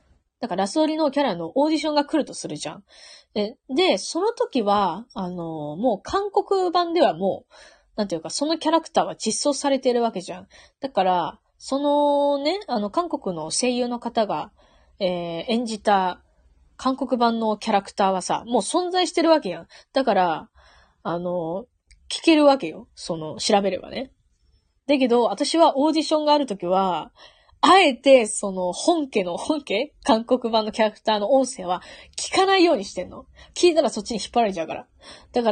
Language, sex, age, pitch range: Japanese, female, 20-39, 200-300 Hz